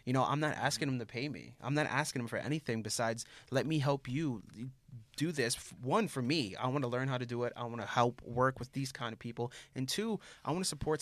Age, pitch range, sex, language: 20-39, 110-135 Hz, male, English